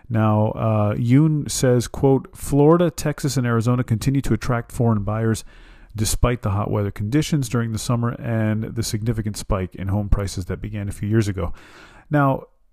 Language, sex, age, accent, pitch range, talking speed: English, male, 40-59, American, 105-145 Hz, 170 wpm